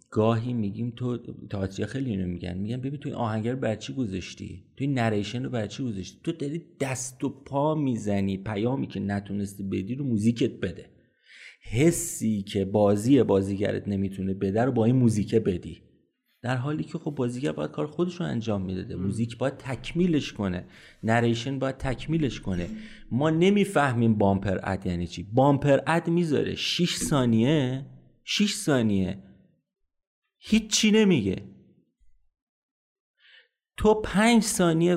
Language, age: Persian, 30-49